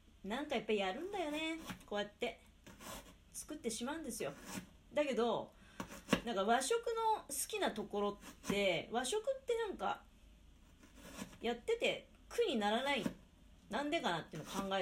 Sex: female